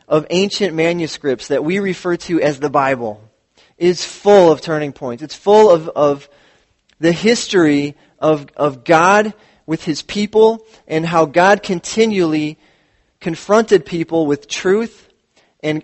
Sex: male